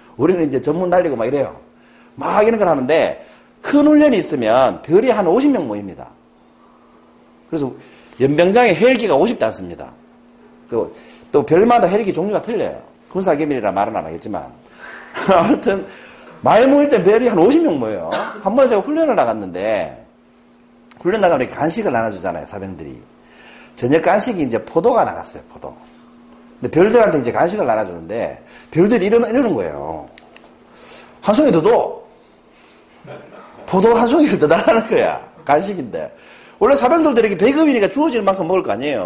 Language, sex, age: Korean, male, 40-59